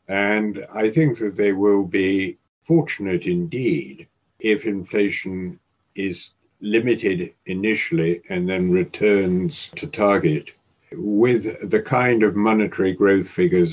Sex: male